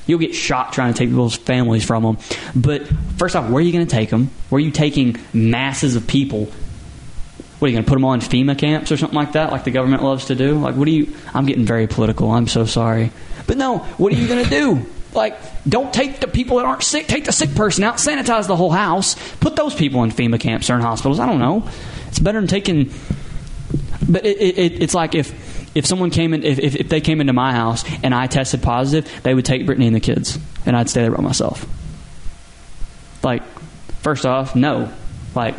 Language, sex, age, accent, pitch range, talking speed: English, male, 20-39, American, 120-150 Hz, 235 wpm